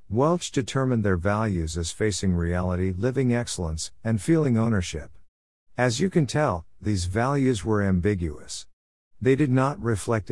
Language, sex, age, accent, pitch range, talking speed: English, male, 50-69, American, 90-120 Hz, 140 wpm